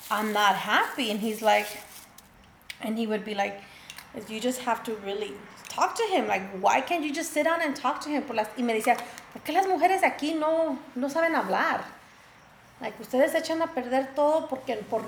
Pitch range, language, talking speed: 210-260 Hz, English, 195 wpm